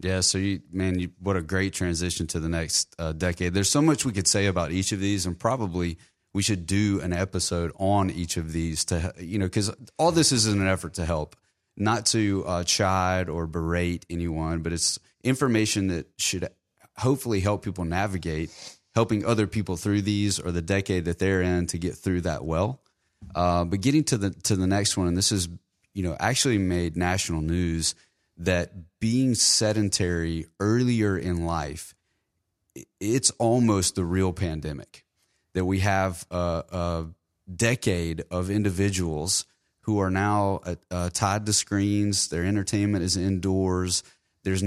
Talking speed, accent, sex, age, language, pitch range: 175 wpm, American, male, 30-49, English, 85-100 Hz